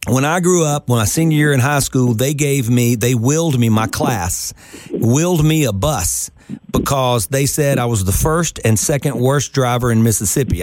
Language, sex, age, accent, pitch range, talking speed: English, male, 40-59, American, 115-155 Hz, 205 wpm